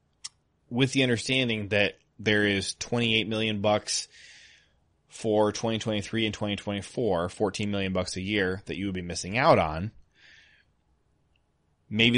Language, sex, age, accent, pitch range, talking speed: English, male, 20-39, American, 95-115 Hz, 130 wpm